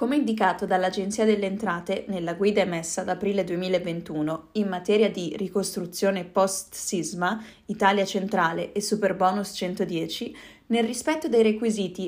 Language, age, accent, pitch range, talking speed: Italian, 20-39, native, 185-225 Hz, 125 wpm